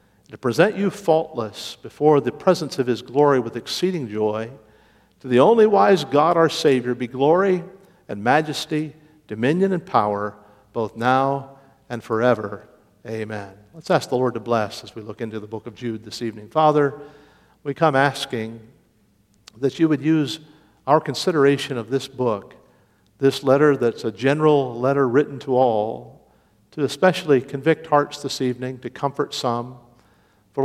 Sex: male